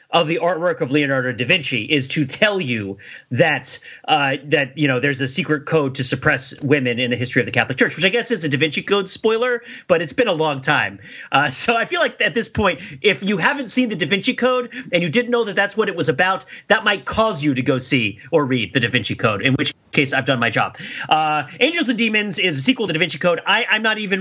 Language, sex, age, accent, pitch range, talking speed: English, male, 30-49, American, 150-220 Hz, 265 wpm